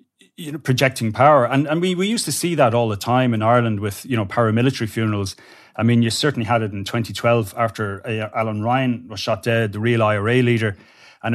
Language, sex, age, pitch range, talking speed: English, male, 30-49, 110-130 Hz, 215 wpm